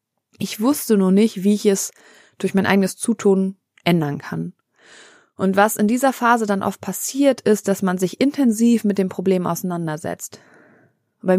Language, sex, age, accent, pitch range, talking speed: German, female, 20-39, German, 185-225 Hz, 165 wpm